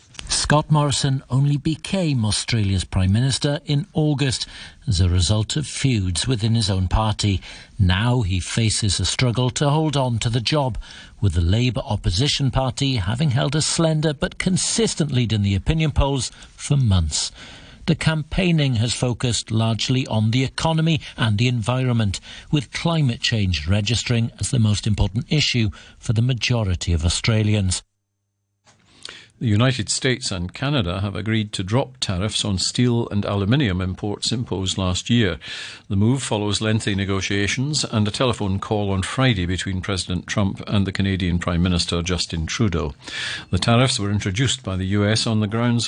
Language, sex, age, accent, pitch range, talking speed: English, male, 60-79, British, 100-130 Hz, 160 wpm